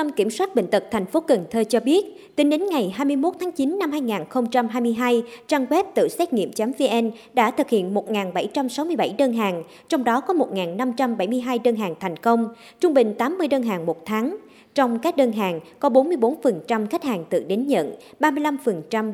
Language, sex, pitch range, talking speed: Vietnamese, male, 215-290 Hz, 180 wpm